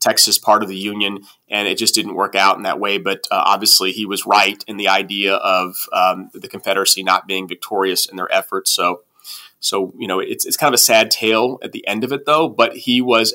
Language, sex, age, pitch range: English, male, 30-49, 105-120 Hz